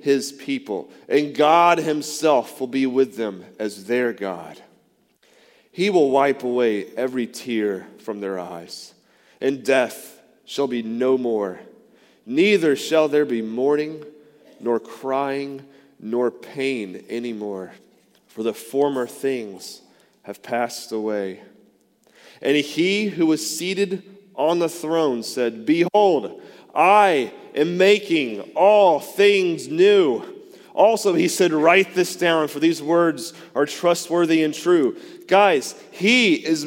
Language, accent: English, American